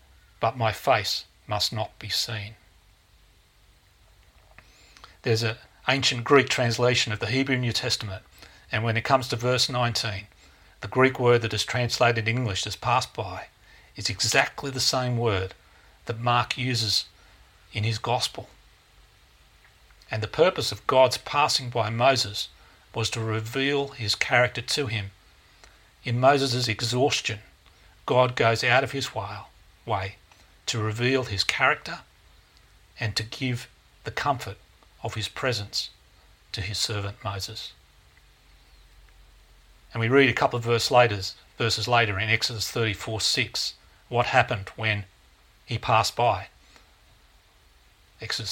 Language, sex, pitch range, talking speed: English, male, 95-120 Hz, 130 wpm